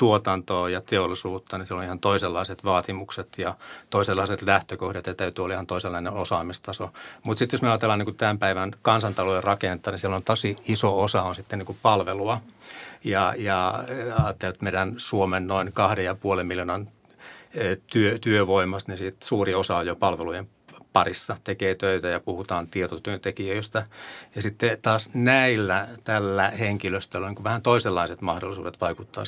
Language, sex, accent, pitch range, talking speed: Finnish, male, native, 95-105 Hz, 150 wpm